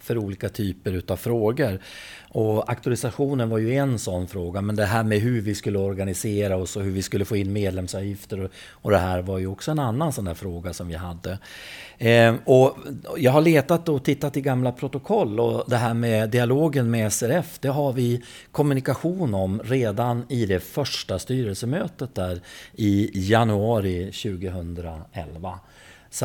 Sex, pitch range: male, 100-130 Hz